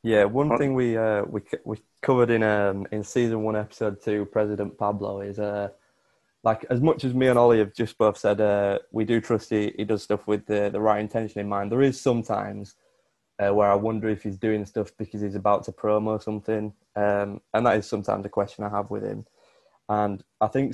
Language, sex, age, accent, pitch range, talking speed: English, male, 20-39, British, 105-120 Hz, 220 wpm